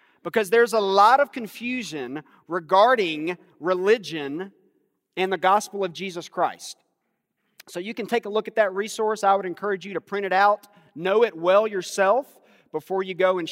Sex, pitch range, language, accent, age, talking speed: male, 160-195 Hz, English, American, 40-59, 175 wpm